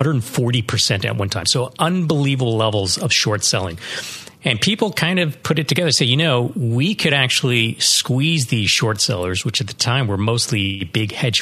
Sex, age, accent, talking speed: male, 40-59, American, 185 wpm